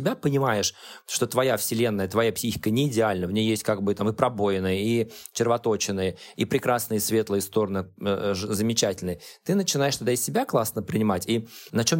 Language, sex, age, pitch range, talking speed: Russian, male, 20-39, 105-140 Hz, 165 wpm